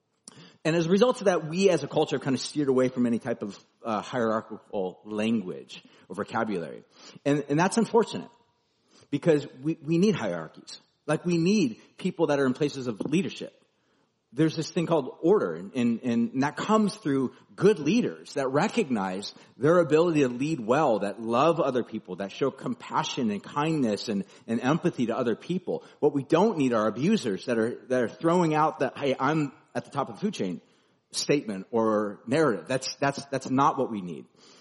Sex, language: male, English